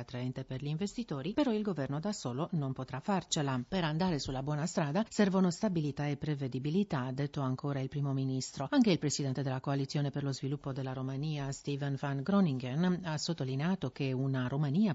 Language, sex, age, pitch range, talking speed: Italian, female, 40-59, 140-175 Hz, 180 wpm